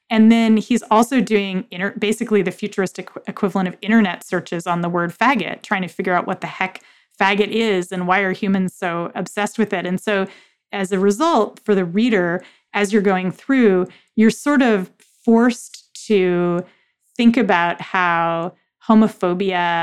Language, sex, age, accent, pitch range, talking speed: English, female, 30-49, American, 175-220 Hz, 165 wpm